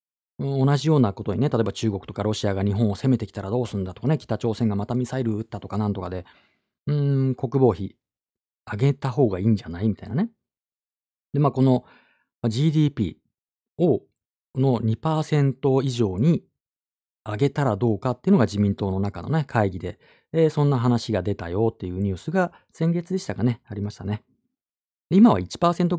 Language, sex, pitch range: Japanese, male, 100-140 Hz